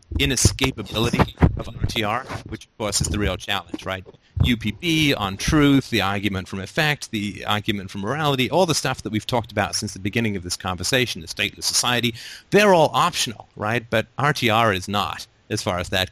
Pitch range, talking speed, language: 95-115 Hz, 180 wpm, English